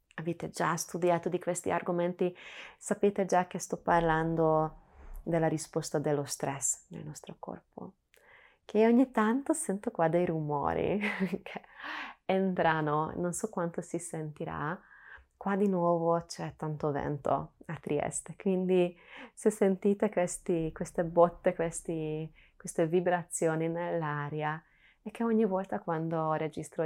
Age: 20-39